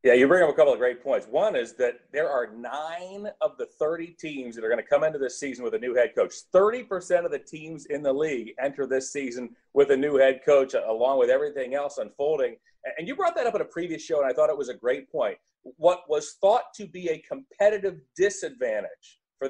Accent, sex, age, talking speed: American, male, 40-59, 240 wpm